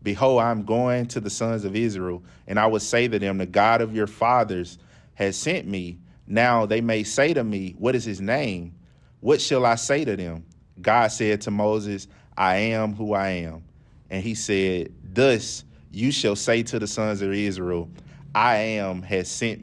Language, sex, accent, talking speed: English, male, American, 195 wpm